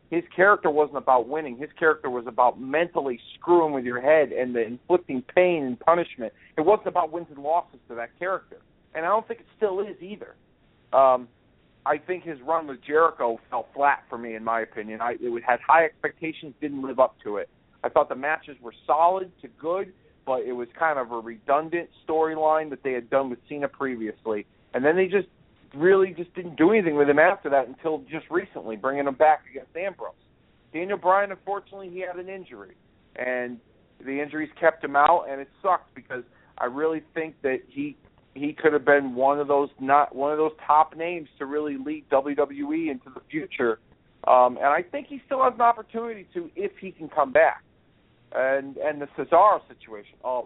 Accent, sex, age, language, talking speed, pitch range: American, male, 50-69, English, 200 wpm, 135-180 Hz